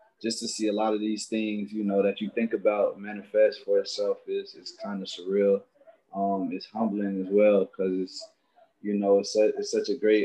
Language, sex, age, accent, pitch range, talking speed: English, male, 20-39, American, 100-110 Hz, 215 wpm